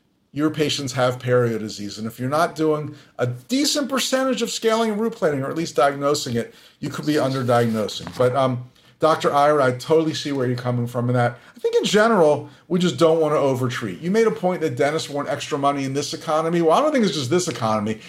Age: 50-69